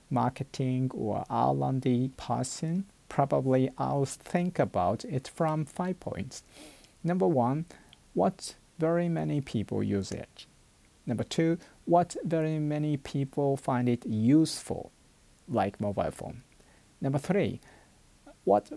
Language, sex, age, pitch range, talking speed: English, male, 50-69, 125-165 Hz, 110 wpm